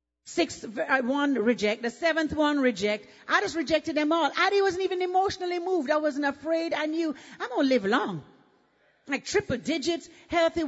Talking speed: 180 wpm